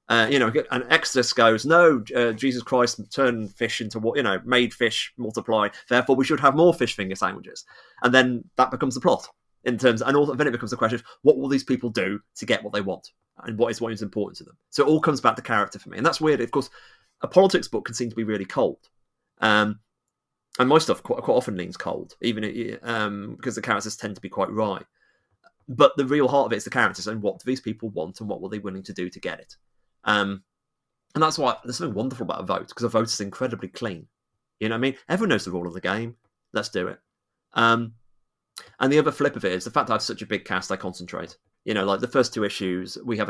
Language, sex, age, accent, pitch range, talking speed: English, male, 30-49, British, 105-130 Hz, 265 wpm